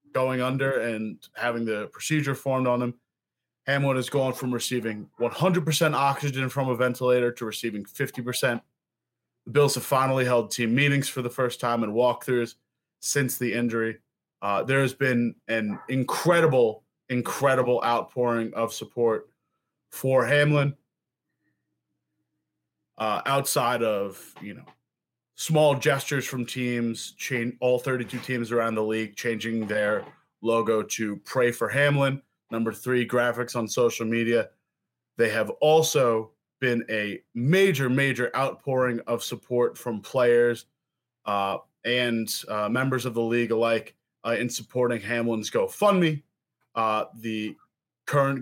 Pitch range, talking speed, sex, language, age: 115-135 Hz, 130 wpm, male, English, 20-39